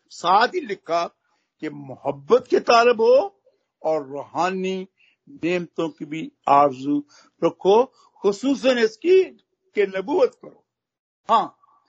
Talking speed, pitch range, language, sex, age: 100 wpm, 170-255 Hz, Hindi, male, 60-79